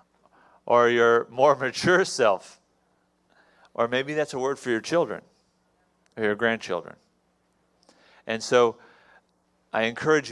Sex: male